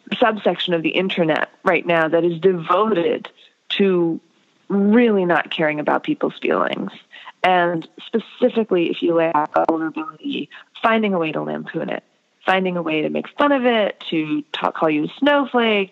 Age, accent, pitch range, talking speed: 30-49, American, 170-230 Hz, 160 wpm